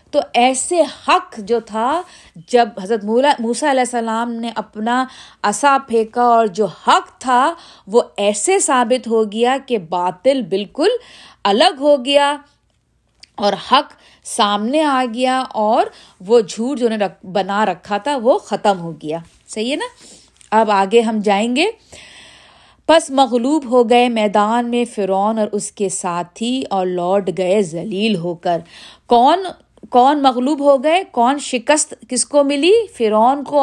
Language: Urdu